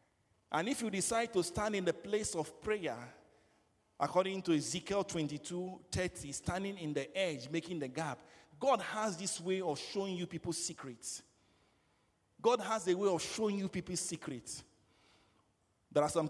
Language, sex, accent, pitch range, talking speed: Swedish, male, Nigerian, 155-195 Hz, 160 wpm